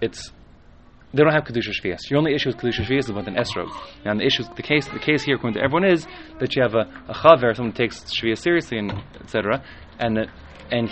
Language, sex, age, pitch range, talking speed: English, male, 20-39, 110-145 Hz, 260 wpm